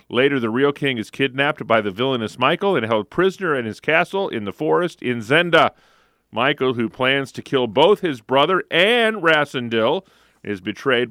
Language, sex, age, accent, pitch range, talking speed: English, male, 40-59, American, 115-160 Hz, 180 wpm